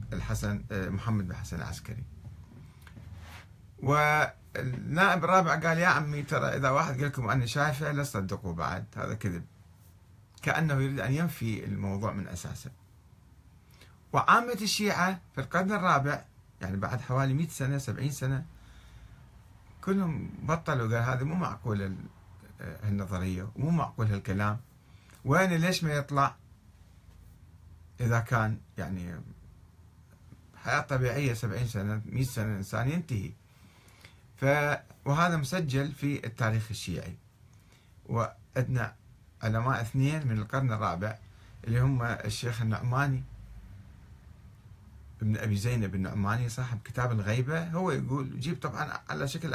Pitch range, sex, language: 100-140 Hz, male, Arabic